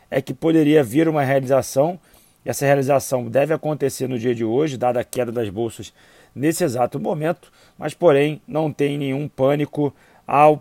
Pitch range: 130-150 Hz